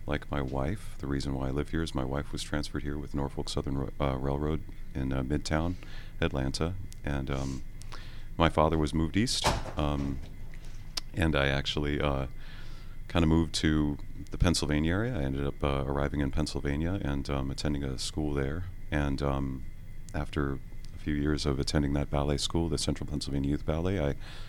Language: English